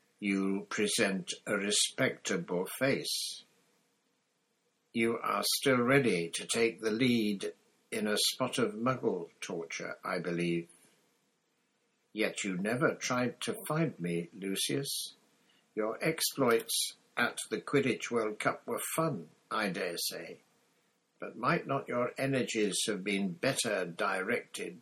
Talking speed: 120 wpm